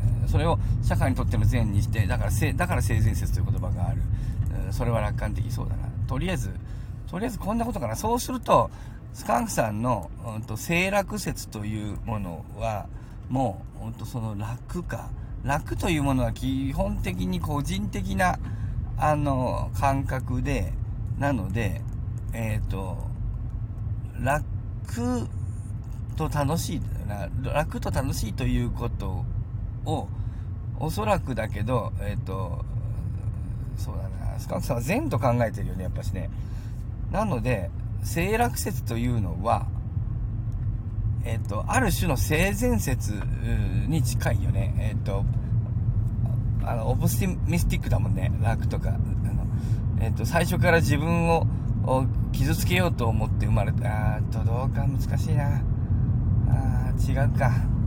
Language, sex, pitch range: Japanese, male, 105-120 Hz